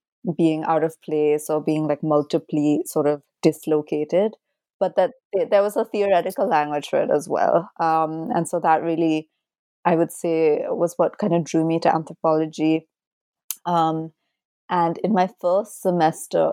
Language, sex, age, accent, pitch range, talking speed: English, female, 30-49, Indian, 155-175 Hz, 160 wpm